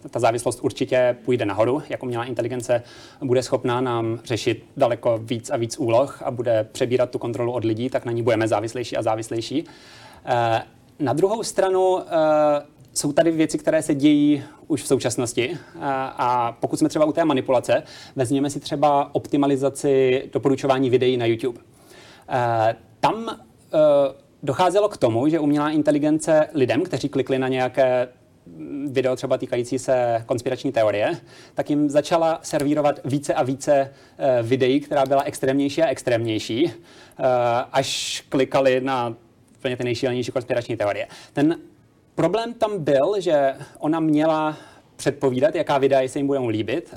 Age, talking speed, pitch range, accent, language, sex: 30-49, 140 wpm, 125-155 Hz, native, Czech, male